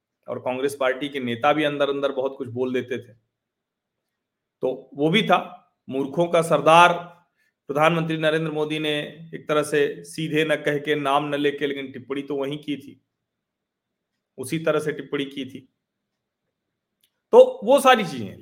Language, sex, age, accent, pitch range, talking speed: Hindi, male, 40-59, native, 145-180 Hz, 165 wpm